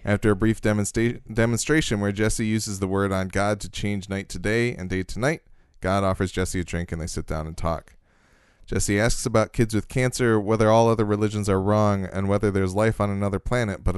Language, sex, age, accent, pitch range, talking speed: English, male, 20-39, American, 90-105 Hz, 220 wpm